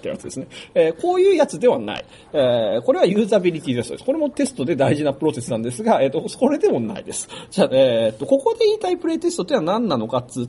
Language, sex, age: Japanese, male, 40-59